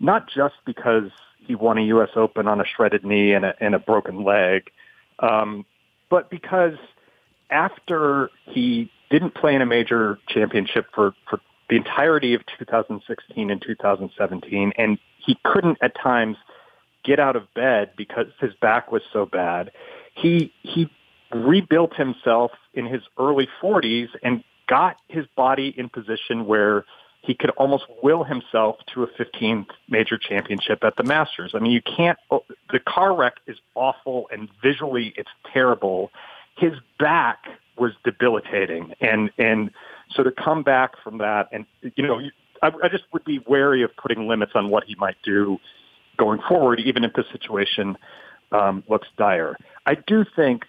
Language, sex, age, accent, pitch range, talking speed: English, male, 40-59, American, 105-140 Hz, 155 wpm